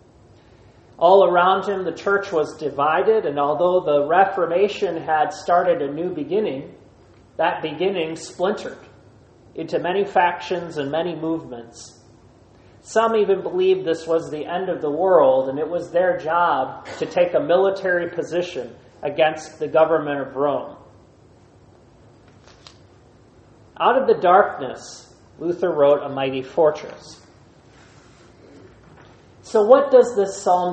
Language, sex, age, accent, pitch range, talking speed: English, male, 40-59, American, 125-185 Hz, 125 wpm